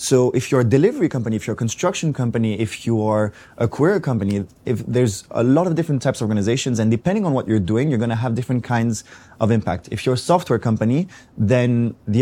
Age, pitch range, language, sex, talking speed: 20-39, 110-135 Hz, English, male, 225 wpm